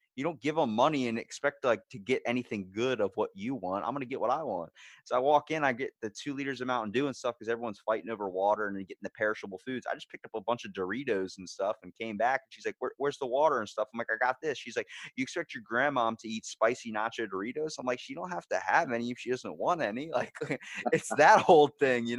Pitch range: 95-125 Hz